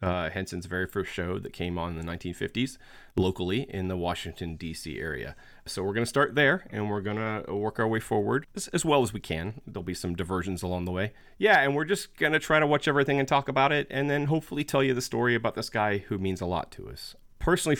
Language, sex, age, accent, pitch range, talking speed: English, male, 30-49, American, 90-125 Hz, 255 wpm